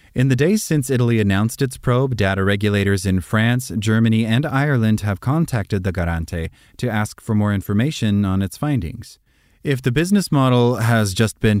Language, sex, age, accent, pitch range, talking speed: English, male, 30-49, American, 100-120 Hz, 175 wpm